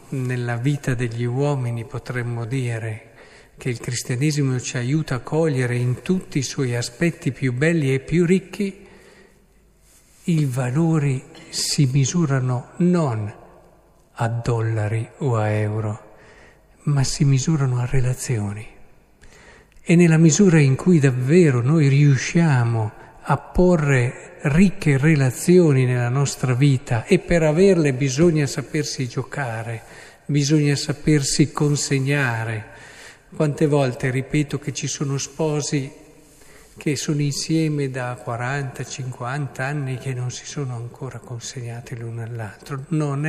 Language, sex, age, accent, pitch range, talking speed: Italian, male, 50-69, native, 125-155 Hz, 120 wpm